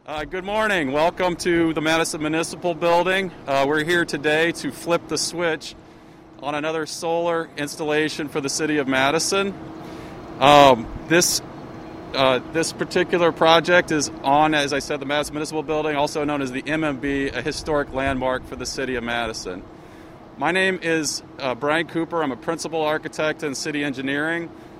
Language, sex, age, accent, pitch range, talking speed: English, male, 40-59, American, 145-165 Hz, 160 wpm